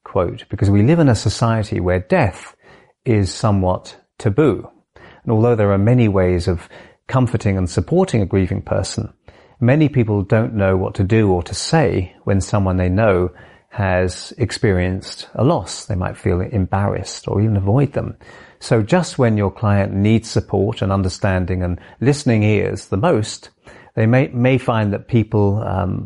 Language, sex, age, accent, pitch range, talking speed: English, male, 30-49, British, 95-115 Hz, 165 wpm